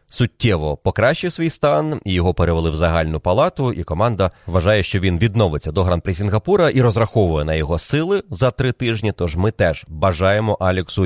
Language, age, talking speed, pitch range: Ukrainian, 30-49, 170 wpm, 90-120 Hz